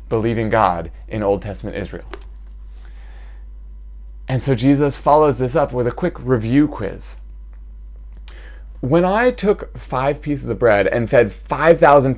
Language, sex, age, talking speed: English, male, 20-39, 135 wpm